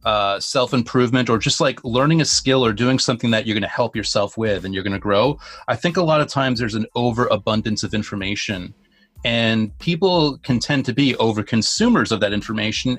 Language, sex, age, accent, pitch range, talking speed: English, male, 30-49, American, 110-135 Hz, 200 wpm